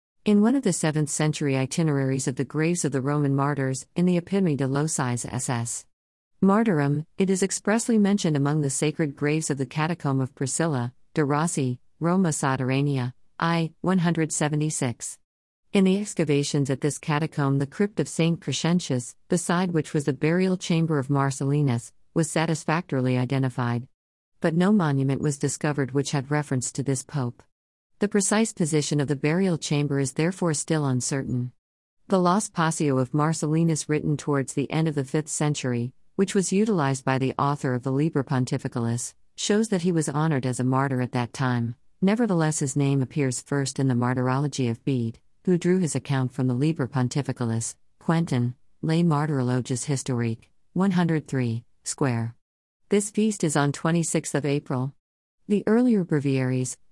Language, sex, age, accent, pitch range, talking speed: Malayalam, female, 50-69, American, 130-165 Hz, 160 wpm